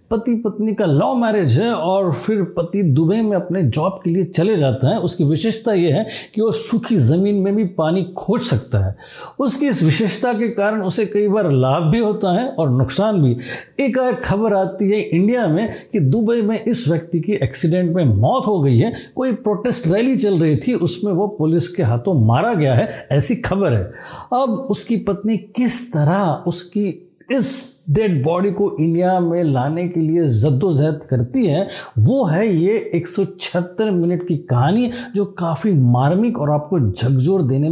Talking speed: 180 wpm